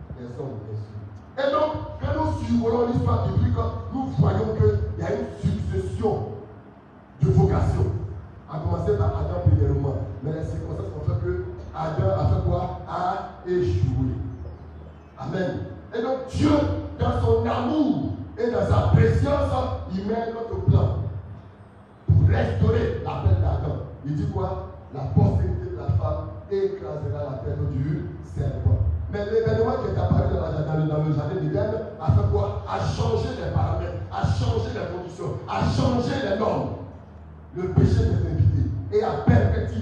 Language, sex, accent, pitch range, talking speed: French, male, French, 90-115 Hz, 160 wpm